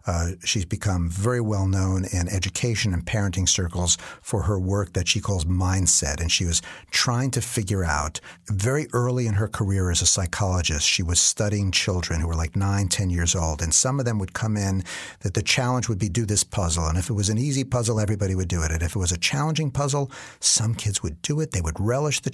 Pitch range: 95-125 Hz